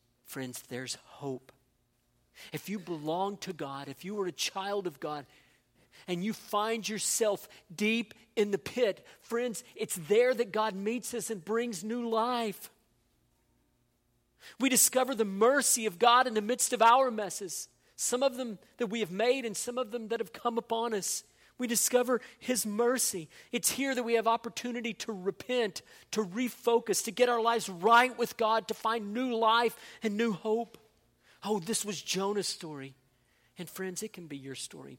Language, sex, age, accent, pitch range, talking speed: English, male, 40-59, American, 145-225 Hz, 175 wpm